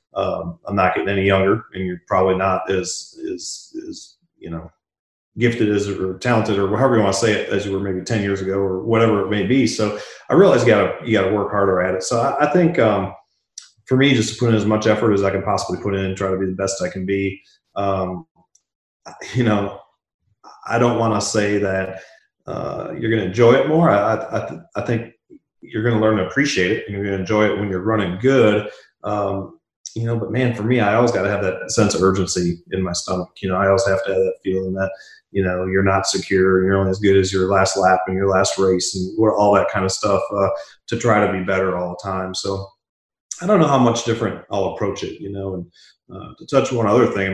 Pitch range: 95-115 Hz